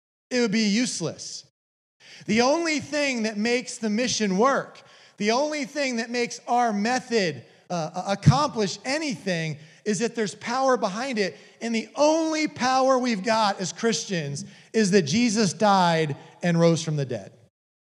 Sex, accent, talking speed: male, American, 150 wpm